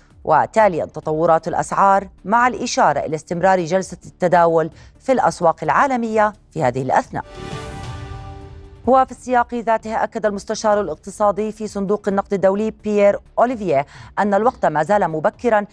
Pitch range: 170-225 Hz